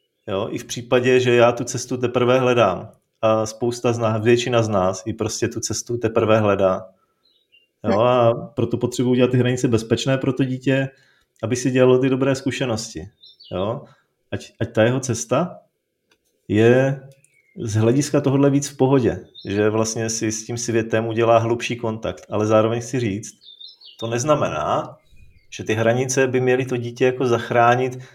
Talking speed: 160 wpm